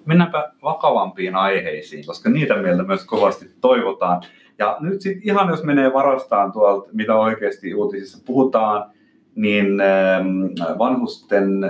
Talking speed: 120 wpm